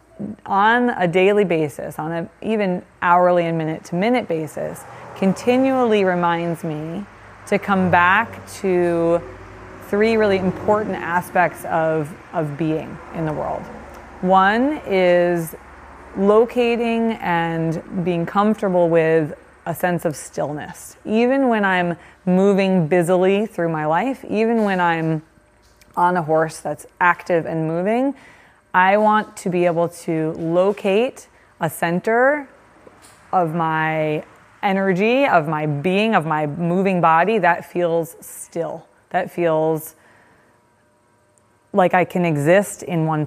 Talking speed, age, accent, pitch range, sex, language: 120 wpm, 20-39, American, 160-195 Hz, female, English